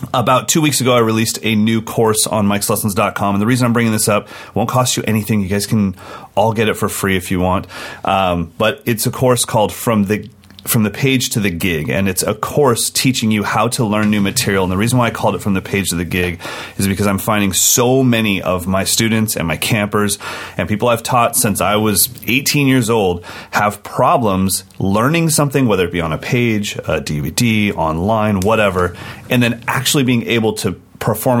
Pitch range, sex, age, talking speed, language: 95-120 Hz, male, 30-49, 220 wpm, English